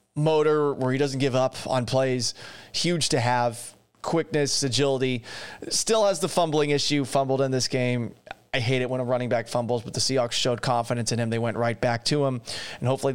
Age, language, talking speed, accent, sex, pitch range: 30-49, English, 205 wpm, American, male, 120-145 Hz